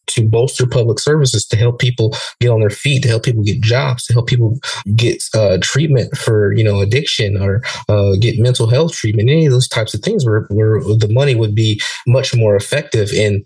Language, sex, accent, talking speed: English, male, American, 215 wpm